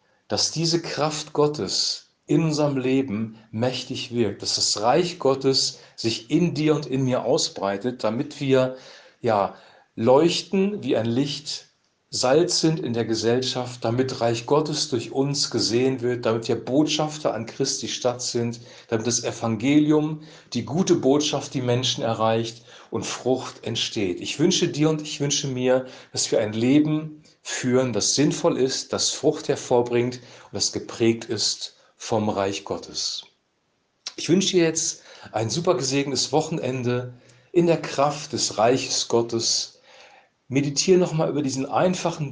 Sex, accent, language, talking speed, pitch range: male, German, German, 145 wpm, 115-150 Hz